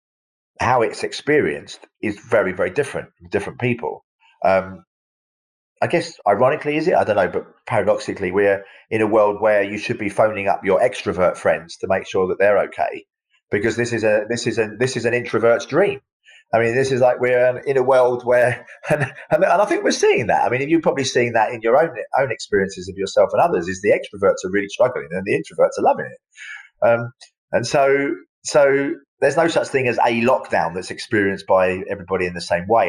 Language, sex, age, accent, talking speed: English, male, 30-49, British, 210 wpm